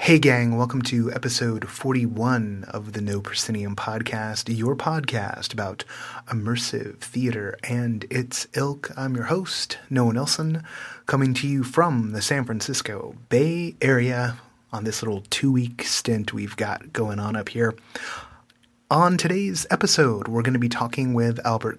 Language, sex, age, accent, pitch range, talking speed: English, male, 30-49, American, 115-150 Hz, 150 wpm